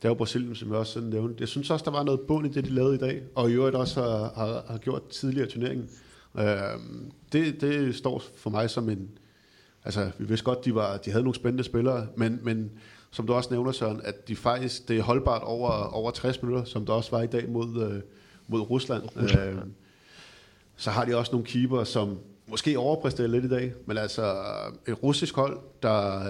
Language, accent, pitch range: Danish, native, 110-130 Hz